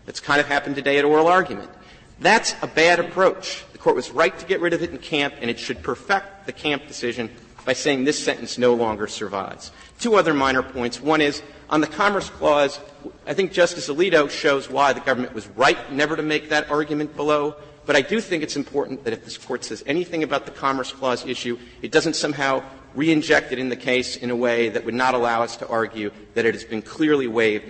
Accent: American